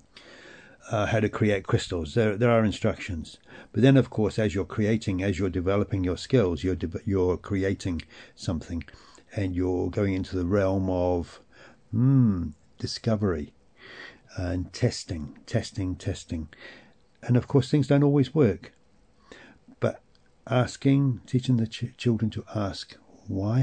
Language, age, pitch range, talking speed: English, 60-79, 95-125 Hz, 140 wpm